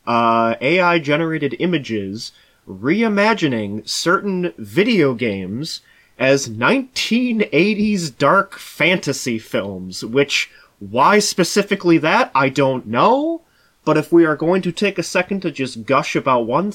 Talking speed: 120 wpm